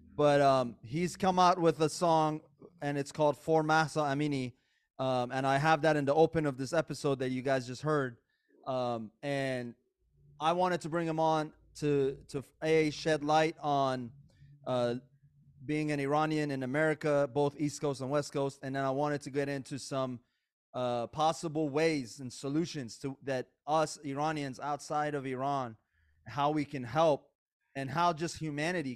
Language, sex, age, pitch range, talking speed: English, male, 30-49, 130-155 Hz, 175 wpm